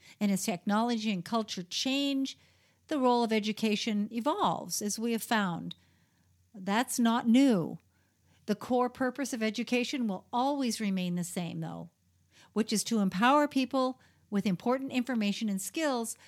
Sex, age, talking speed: female, 50-69, 145 wpm